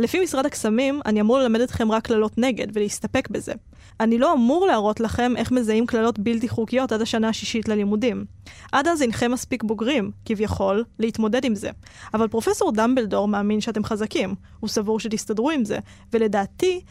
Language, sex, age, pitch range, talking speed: Hebrew, female, 20-39, 215-245 Hz, 165 wpm